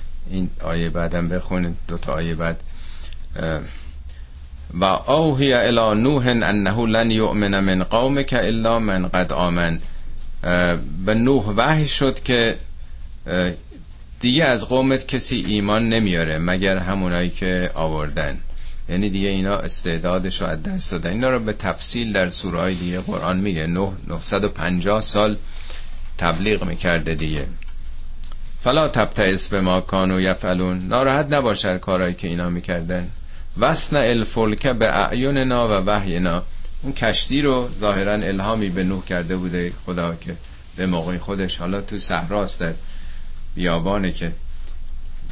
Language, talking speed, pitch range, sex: Persian, 130 wpm, 80-105 Hz, male